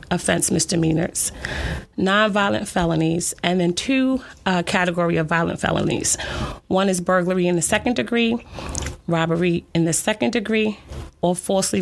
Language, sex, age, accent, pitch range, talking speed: English, female, 30-49, American, 165-195 Hz, 130 wpm